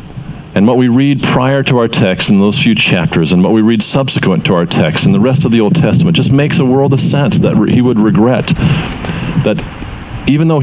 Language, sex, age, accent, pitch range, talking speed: English, male, 50-69, American, 130-165 Hz, 225 wpm